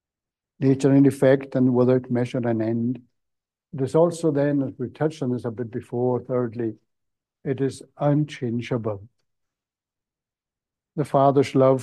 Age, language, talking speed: 60-79, English, 135 wpm